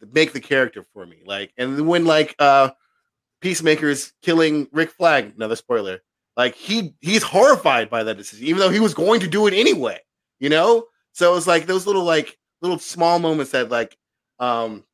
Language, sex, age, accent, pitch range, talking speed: English, male, 30-49, American, 120-155 Hz, 190 wpm